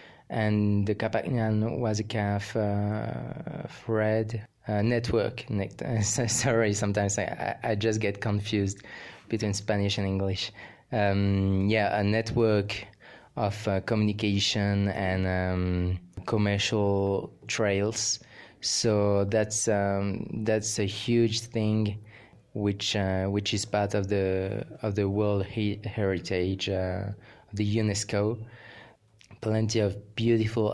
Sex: male